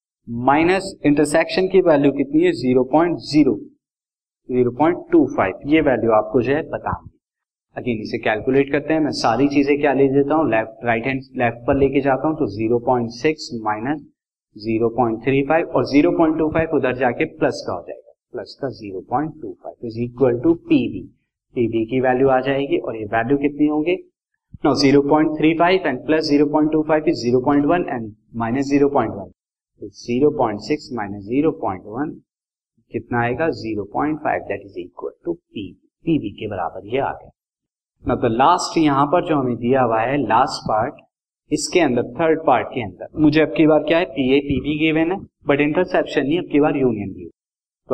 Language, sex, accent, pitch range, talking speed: Hindi, male, native, 125-155 Hz, 160 wpm